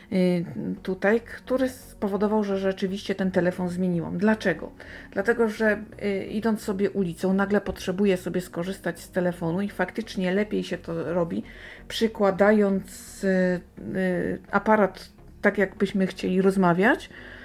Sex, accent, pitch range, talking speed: female, native, 170-205 Hz, 110 wpm